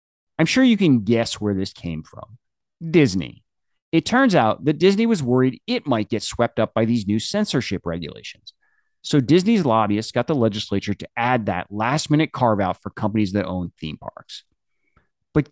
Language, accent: English, American